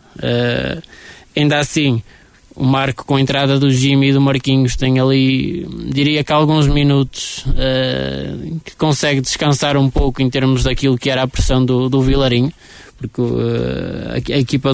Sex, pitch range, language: male, 125-140 Hz, Portuguese